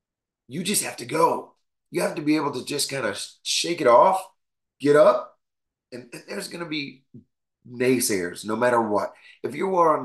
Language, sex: English, male